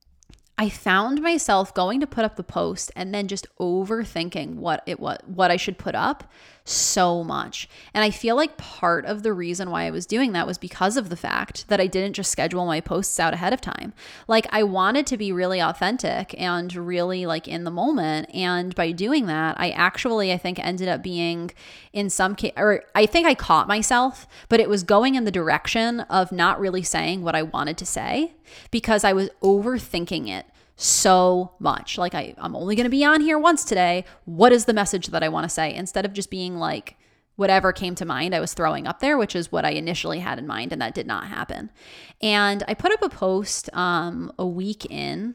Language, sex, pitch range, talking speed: English, female, 175-220 Hz, 215 wpm